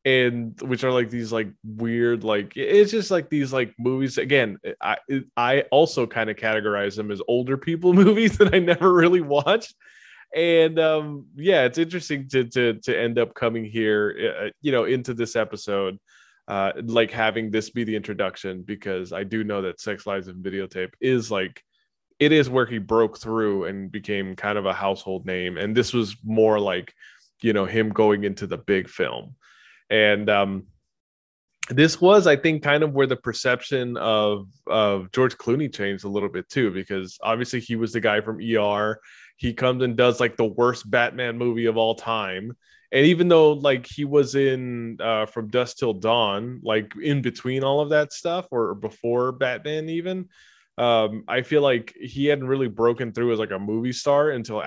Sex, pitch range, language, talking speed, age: male, 105-135 Hz, English, 190 wpm, 20-39